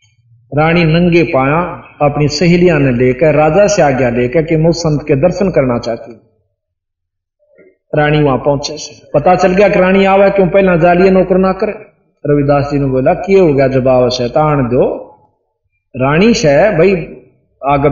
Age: 50-69